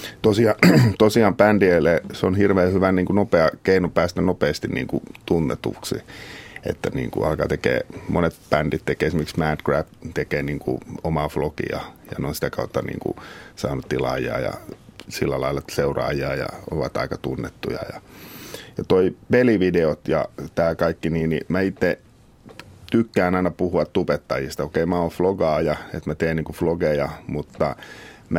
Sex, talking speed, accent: male, 160 wpm, native